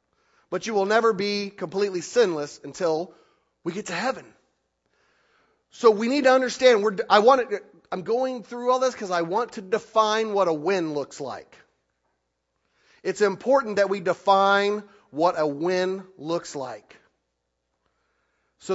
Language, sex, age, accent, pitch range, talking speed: English, male, 40-59, American, 150-215 Hz, 140 wpm